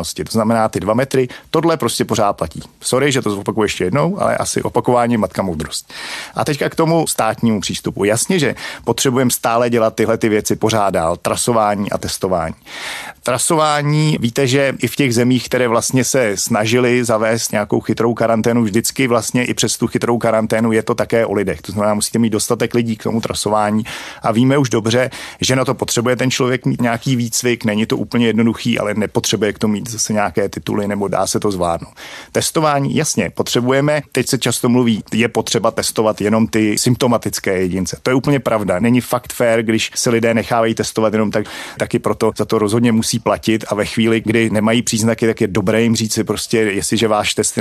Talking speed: 195 wpm